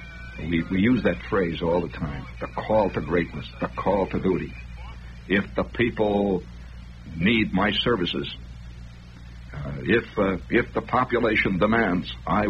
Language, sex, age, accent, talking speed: English, male, 60-79, American, 145 wpm